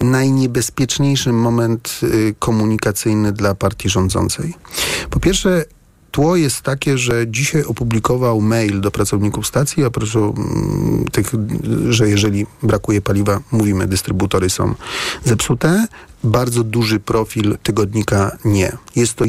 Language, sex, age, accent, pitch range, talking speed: Polish, male, 40-59, native, 105-125 Hz, 110 wpm